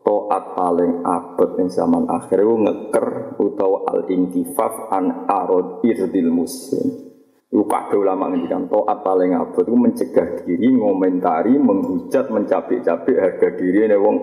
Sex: male